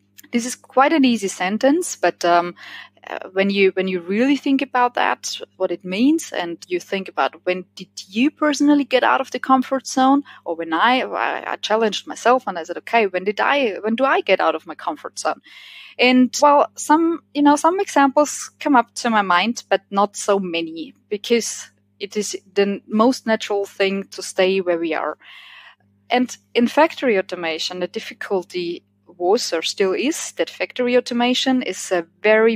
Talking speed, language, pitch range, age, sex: 180 wpm, English, 180-240 Hz, 20-39, female